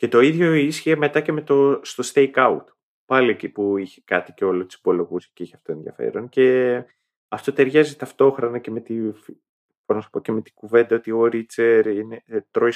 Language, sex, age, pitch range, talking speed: Greek, male, 30-49, 105-150 Hz, 175 wpm